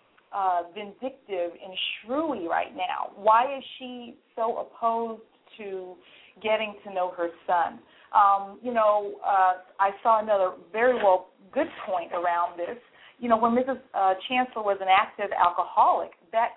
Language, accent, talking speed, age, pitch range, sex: English, American, 150 wpm, 40-59, 195-265 Hz, female